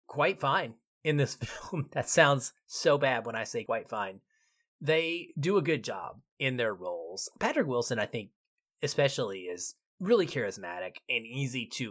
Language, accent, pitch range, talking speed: English, American, 120-175 Hz, 165 wpm